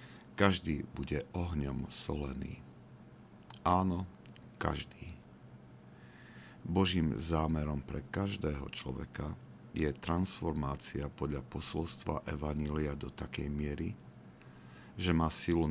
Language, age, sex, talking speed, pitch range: Slovak, 50-69, male, 85 wpm, 70-85 Hz